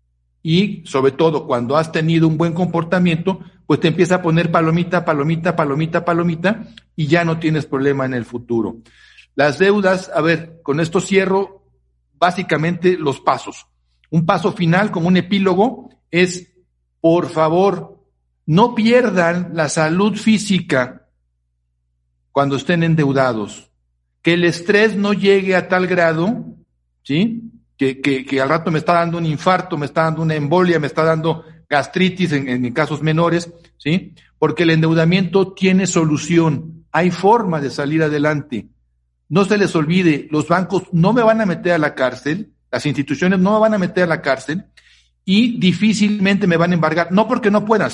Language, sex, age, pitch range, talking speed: Spanish, male, 60-79, 150-190 Hz, 165 wpm